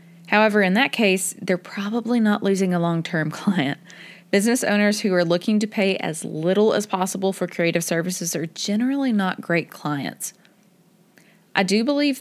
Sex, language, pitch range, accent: female, English, 165-210 Hz, American